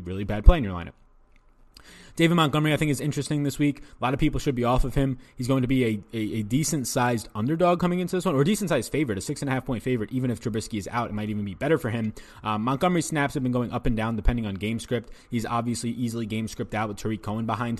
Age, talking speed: 20-39, 285 wpm